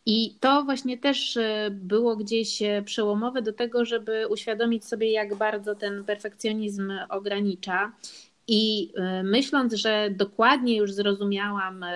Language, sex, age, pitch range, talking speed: Polish, female, 30-49, 200-235 Hz, 115 wpm